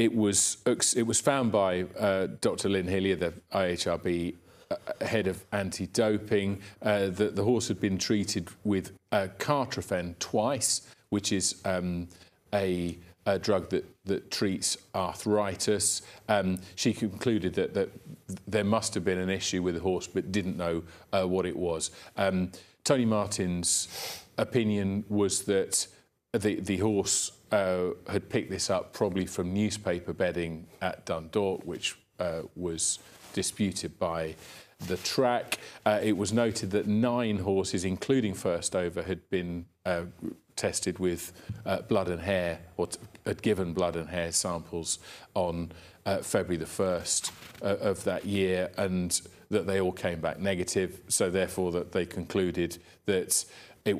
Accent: British